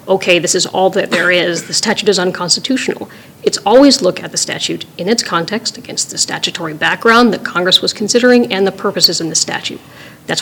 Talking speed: 200 wpm